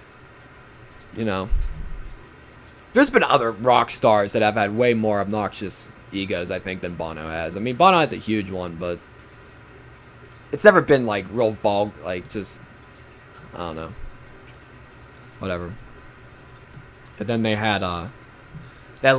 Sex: male